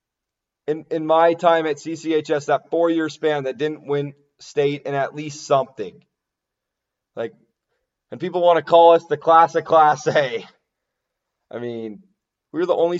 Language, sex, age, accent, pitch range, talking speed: English, male, 20-39, American, 145-170 Hz, 160 wpm